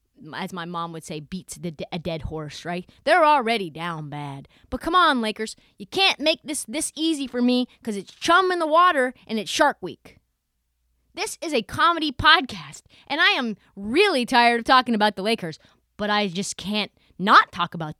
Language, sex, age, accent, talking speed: English, female, 20-39, American, 195 wpm